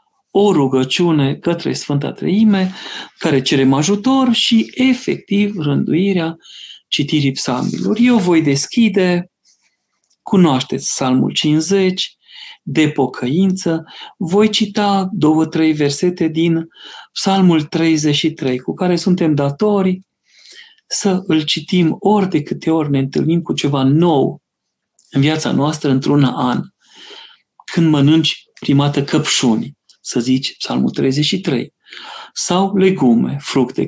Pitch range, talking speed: 140-190 Hz, 105 wpm